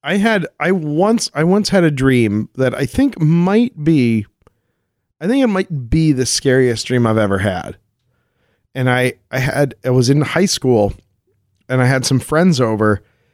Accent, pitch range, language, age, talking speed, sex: American, 115-155 Hz, English, 40-59, 180 wpm, male